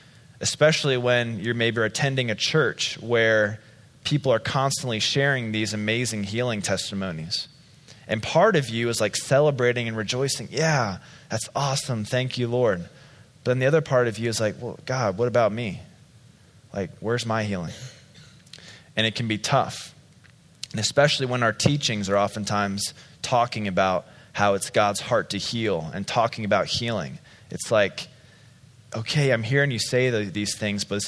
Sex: male